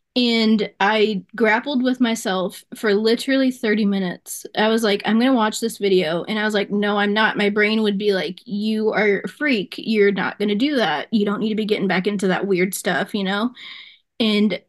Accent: American